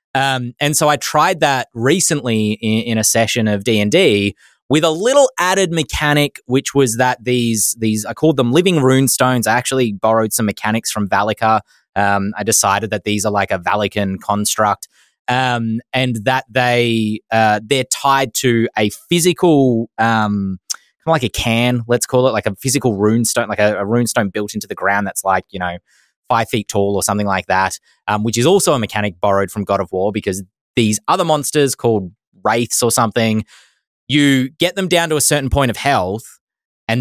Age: 20-39